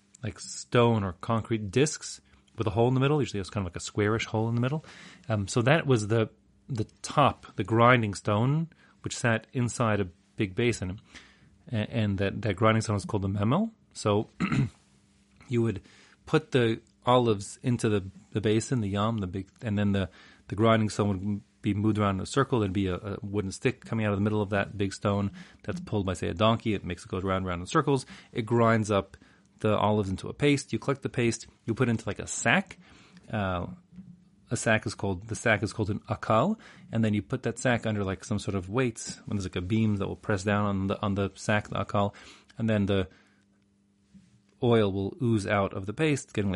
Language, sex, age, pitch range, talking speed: English, male, 30-49, 100-115 Hz, 225 wpm